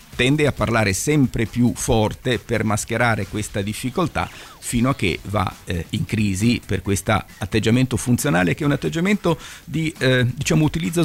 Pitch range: 100-125 Hz